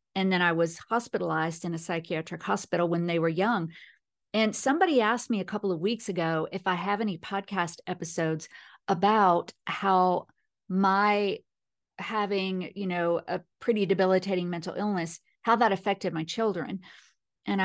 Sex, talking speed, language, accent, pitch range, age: female, 155 wpm, English, American, 180-230 Hz, 40-59